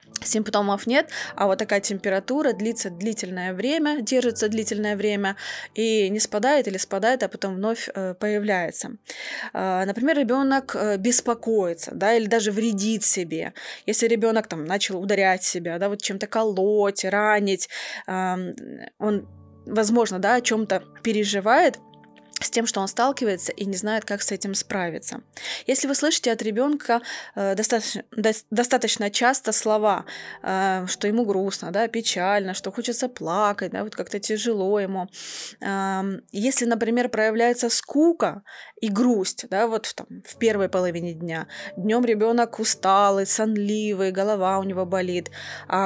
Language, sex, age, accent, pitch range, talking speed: Russian, female, 20-39, native, 195-230 Hz, 140 wpm